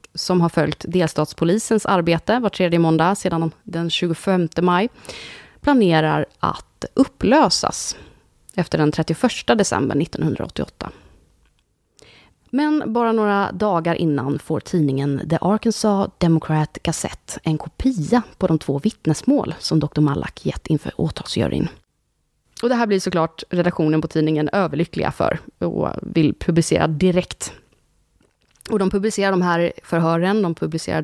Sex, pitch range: female, 160-210 Hz